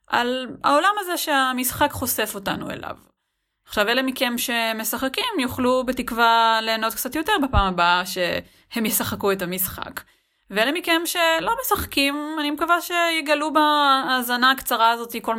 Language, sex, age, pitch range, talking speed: Hebrew, female, 30-49, 195-290 Hz, 130 wpm